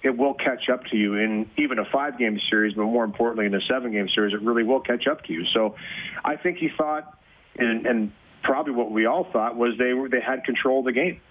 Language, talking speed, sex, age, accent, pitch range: English, 240 wpm, male, 40-59, American, 110-130 Hz